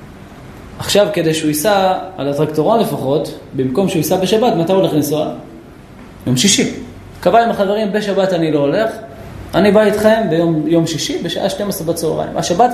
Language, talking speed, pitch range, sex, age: Hebrew, 155 wpm, 155-235 Hz, male, 20-39